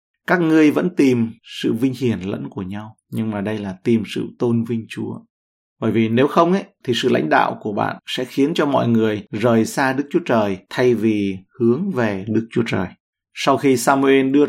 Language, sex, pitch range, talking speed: Vietnamese, male, 110-140 Hz, 210 wpm